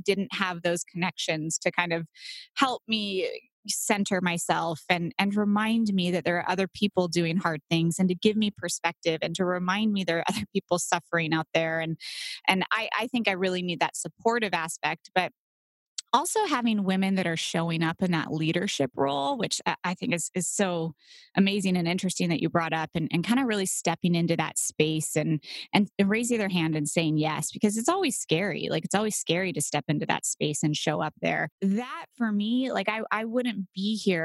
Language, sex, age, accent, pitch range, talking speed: English, female, 20-39, American, 165-205 Hz, 210 wpm